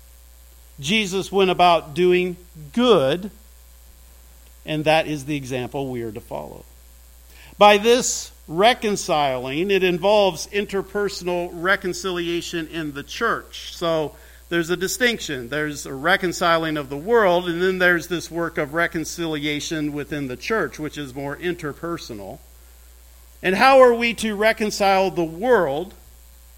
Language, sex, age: English, male, 50-69